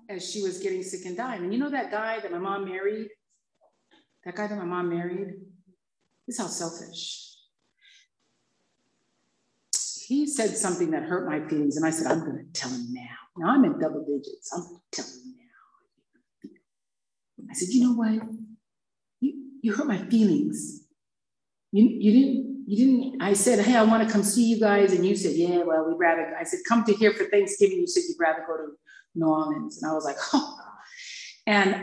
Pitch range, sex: 165-225 Hz, female